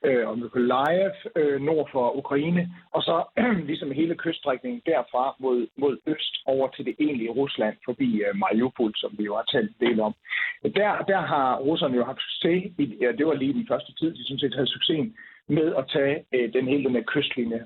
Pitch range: 120-160 Hz